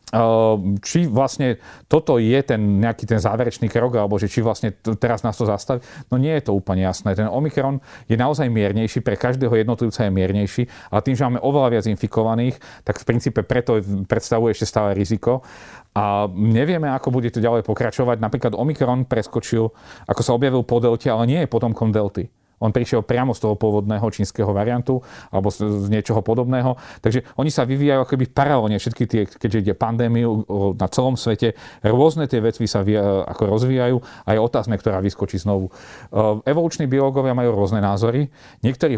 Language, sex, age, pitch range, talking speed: Slovak, male, 40-59, 110-130 Hz, 175 wpm